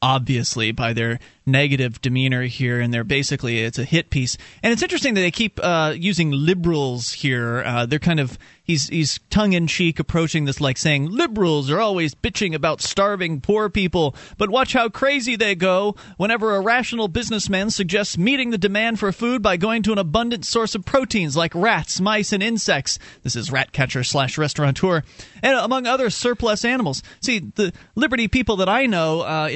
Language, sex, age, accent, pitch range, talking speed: English, male, 30-49, American, 150-215 Hz, 185 wpm